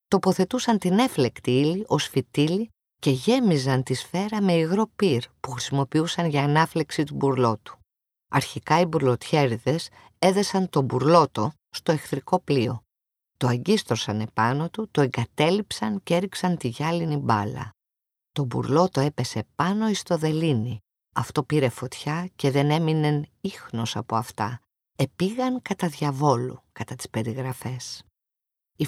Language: Greek